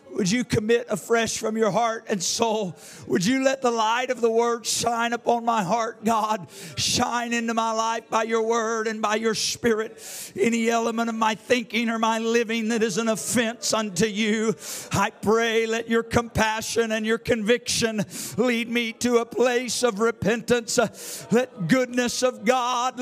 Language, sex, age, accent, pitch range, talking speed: English, male, 50-69, American, 225-265 Hz, 170 wpm